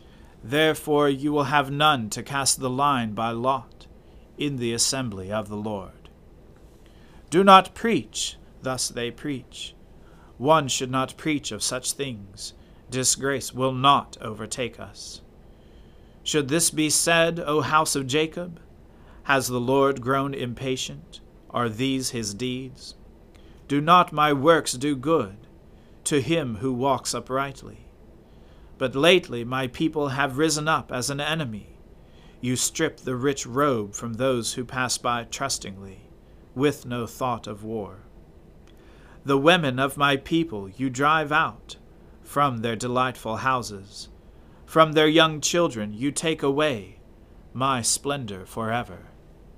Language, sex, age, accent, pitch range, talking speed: English, male, 40-59, American, 110-145 Hz, 135 wpm